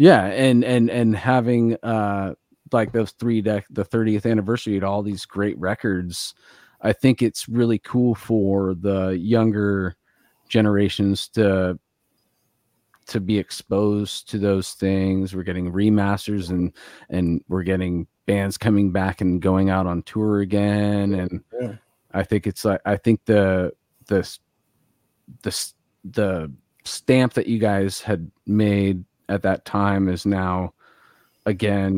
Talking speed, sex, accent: 135 wpm, male, American